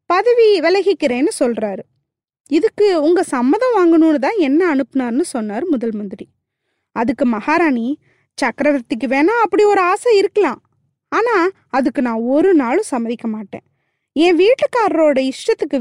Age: 20-39